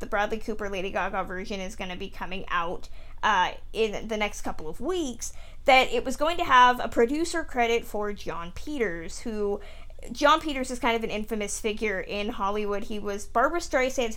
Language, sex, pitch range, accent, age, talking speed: English, female, 205-245 Hz, American, 20-39, 195 wpm